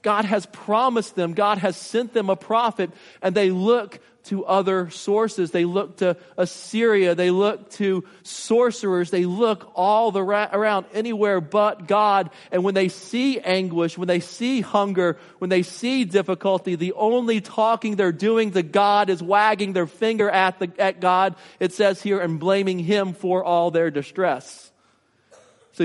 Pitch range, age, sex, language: 170-205 Hz, 40-59, male, English